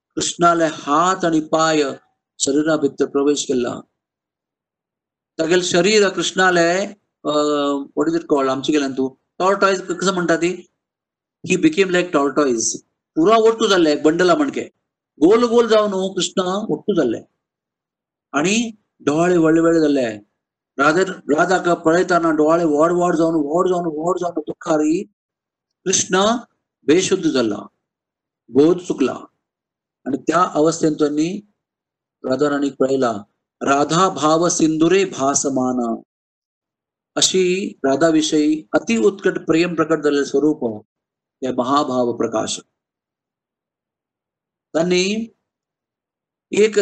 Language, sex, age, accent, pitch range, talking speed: Kannada, male, 50-69, native, 150-190 Hz, 60 wpm